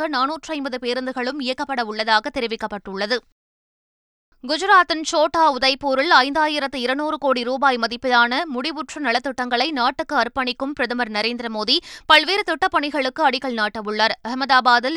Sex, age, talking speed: female, 20-39, 95 wpm